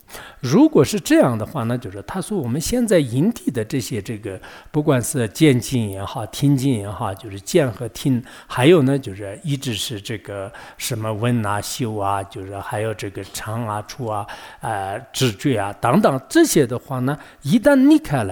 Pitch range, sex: 105-145 Hz, male